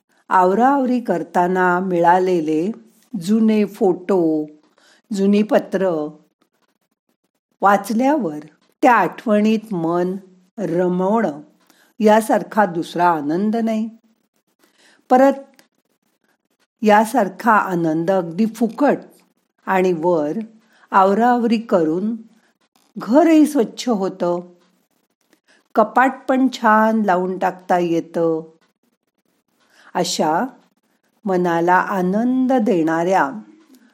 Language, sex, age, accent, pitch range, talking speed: Marathi, female, 50-69, native, 180-240 Hz, 65 wpm